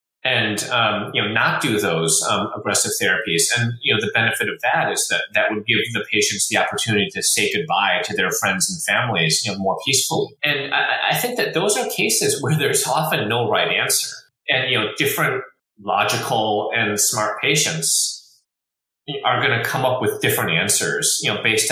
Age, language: 30-49, English